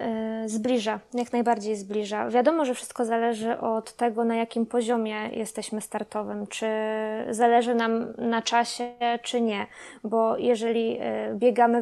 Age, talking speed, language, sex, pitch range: 20-39, 125 wpm, Polish, female, 230-260 Hz